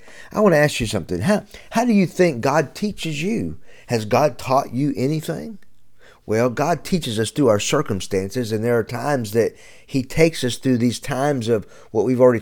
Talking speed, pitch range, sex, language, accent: 200 wpm, 115-150 Hz, male, English, American